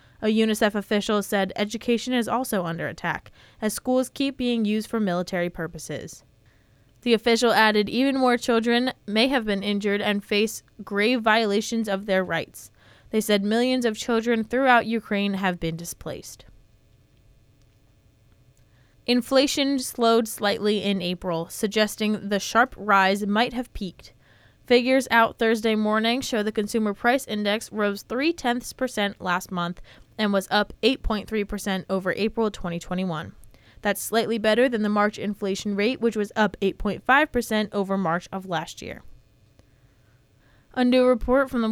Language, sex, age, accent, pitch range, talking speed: English, female, 20-39, American, 190-235 Hz, 145 wpm